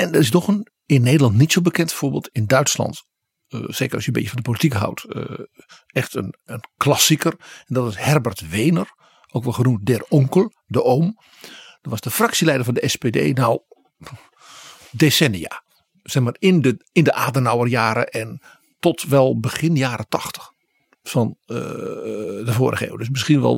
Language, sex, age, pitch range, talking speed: Dutch, male, 50-69, 120-155 Hz, 180 wpm